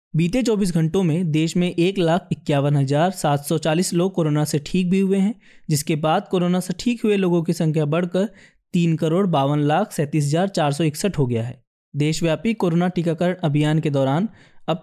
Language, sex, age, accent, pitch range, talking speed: Hindi, male, 20-39, native, 155-195 Hz, 165 wpm